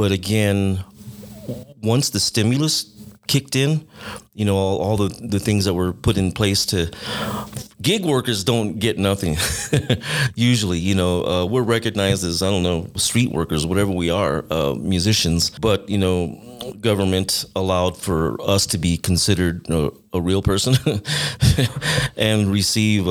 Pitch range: 95-115 Hz